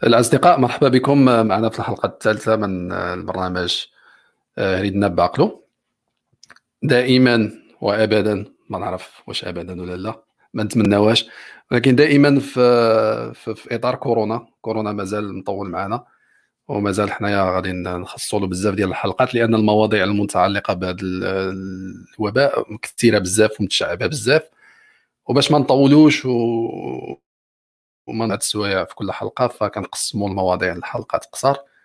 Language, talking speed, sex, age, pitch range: Arabic, 115 wpm, male, 40-59, 100-120 Hz